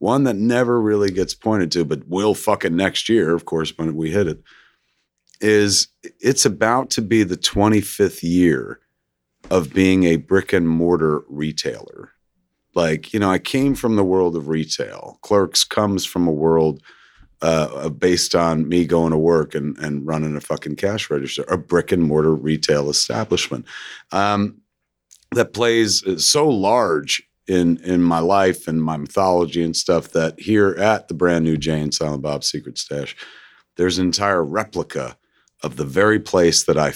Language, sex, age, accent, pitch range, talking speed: English, male, 40-59, American, 80-100 Hz, 165 wpm